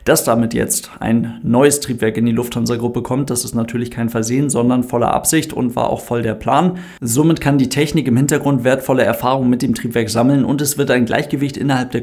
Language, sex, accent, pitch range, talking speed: German, male, German, 120-140 Hz, 215 wpm